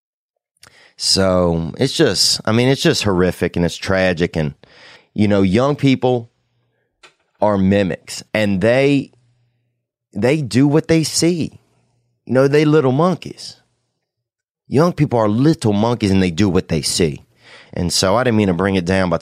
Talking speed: 160 wpm